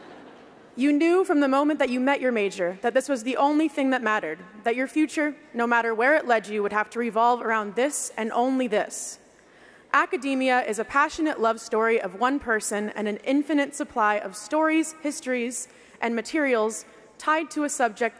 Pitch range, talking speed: 230-280 Hz, 190 wpm